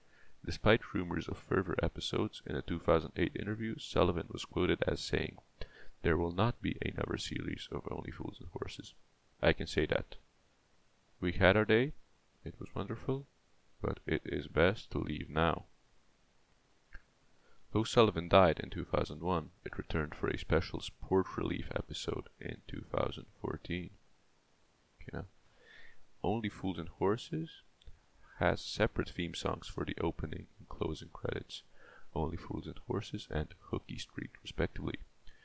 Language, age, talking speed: English, 30-49, 135 wpm